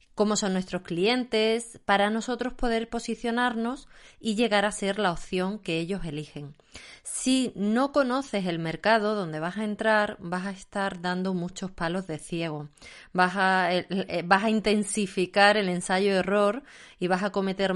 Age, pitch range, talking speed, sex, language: 20-39, 175-210 Hz, 150 wpm, female, Spanish